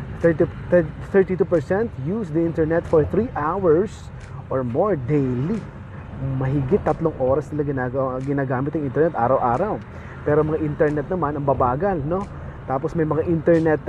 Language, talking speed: Filipino, 130 wpm